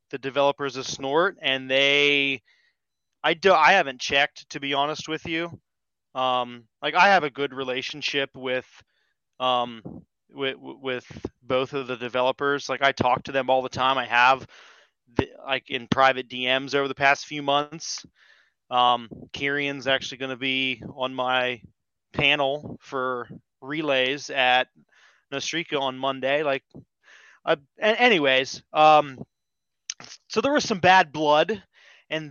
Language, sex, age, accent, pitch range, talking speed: English, male, 20-39, American, 130-145 Hz, 145 wpm